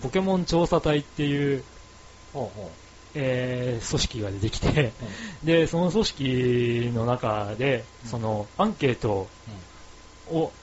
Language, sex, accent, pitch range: Japanese, male, native, 105-145 Hz